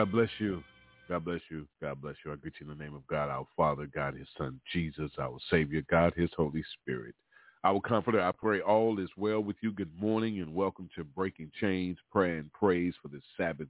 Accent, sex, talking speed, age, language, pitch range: American, male, 230 wpm, 40-59, English, 85-105 Hz